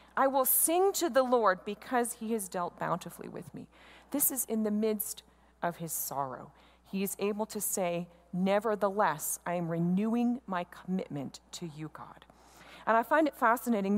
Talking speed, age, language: 170 wpm, 30-49, English